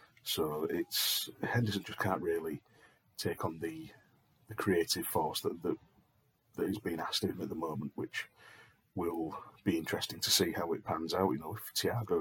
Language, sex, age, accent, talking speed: English, male, 40-59, British, 180 wpm